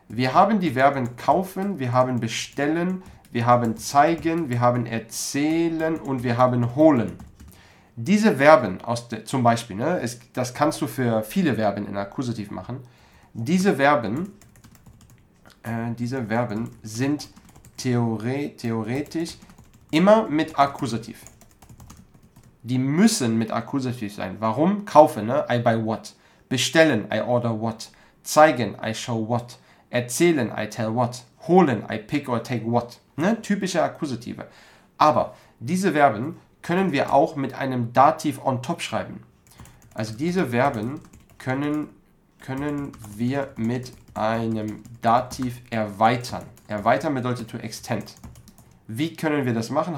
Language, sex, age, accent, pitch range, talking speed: German, male, 40-59, German, 115-155 Hz, 130 wpm